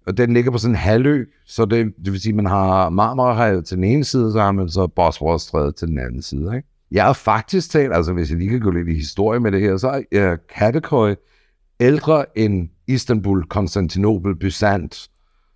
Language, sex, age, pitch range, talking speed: Danish, male, 60-79, 90-115 Hz, 210 wpm